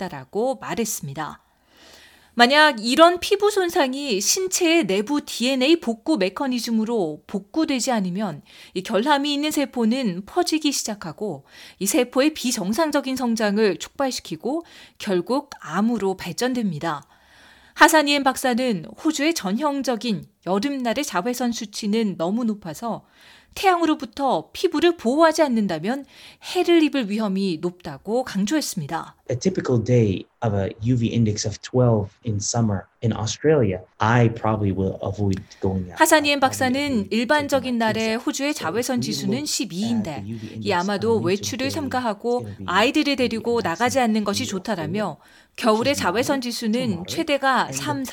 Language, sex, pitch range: Korean, female, 175-270 Hz